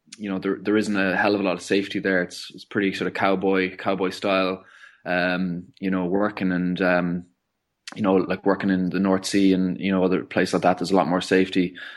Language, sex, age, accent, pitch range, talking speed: English, male, 20-39, Irish, 90-100 Hz, 235 wpm